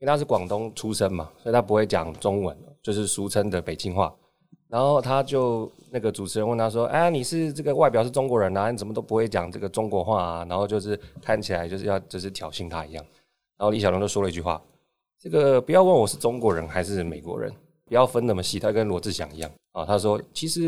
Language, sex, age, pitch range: Chinese, male, 20-39, 95-130 Hz